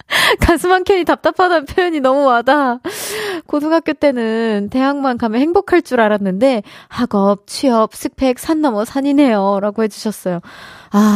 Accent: native